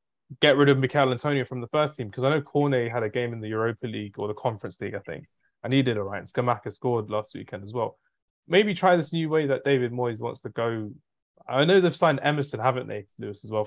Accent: British